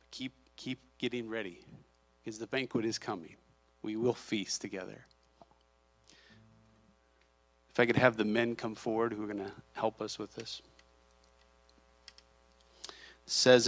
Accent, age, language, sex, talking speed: American, 40-59, English, male, 130 wpm